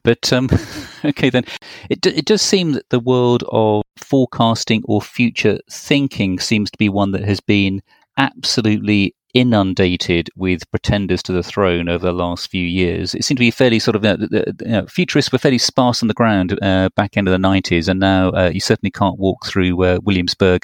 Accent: British